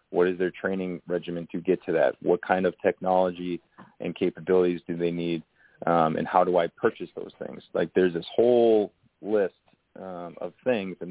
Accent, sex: American, male